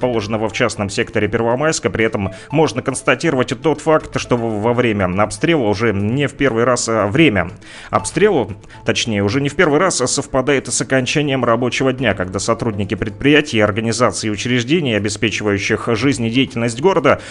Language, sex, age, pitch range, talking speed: Russian, male, 30-49, 110-145 Hz, 155 wpm